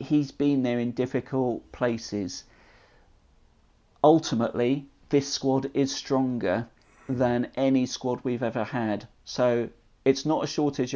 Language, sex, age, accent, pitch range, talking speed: English, male, 40-59, British, 115-135 Hz, 120 wpm